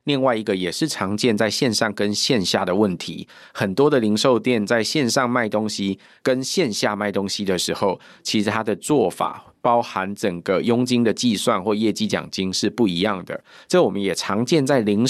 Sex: male